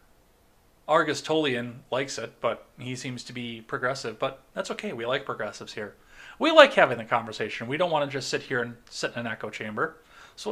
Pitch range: 120-150 Hz